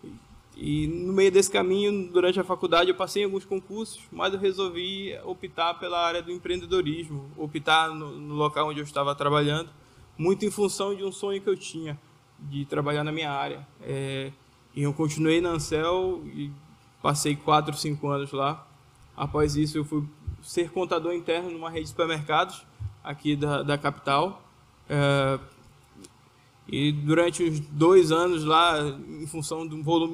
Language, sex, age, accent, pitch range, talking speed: Portuguese, male, 20-39, Brazilian, 150-185 Hz, 160 wpm